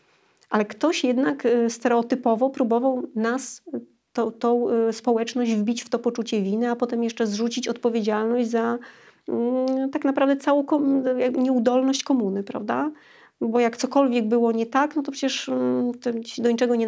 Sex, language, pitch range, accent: female, Polish, 225-260 Hz, native